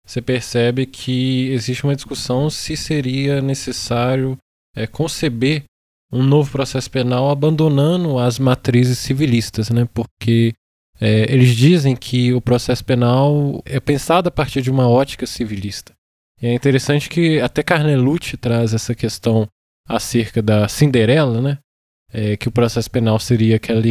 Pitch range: 120-150 Hz